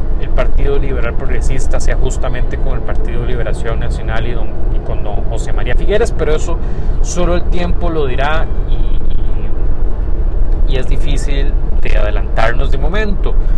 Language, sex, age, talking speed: Spanish, male, 30-49, 155 wpm